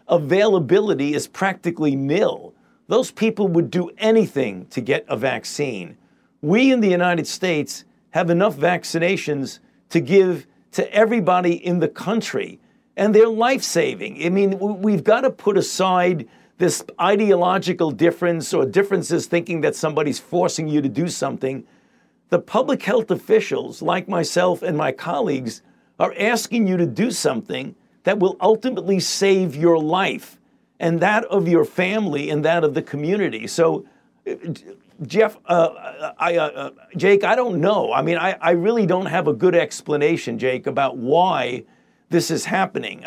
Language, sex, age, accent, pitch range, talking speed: English, male, 50-69, American, 165-200 Hz, 150 wpm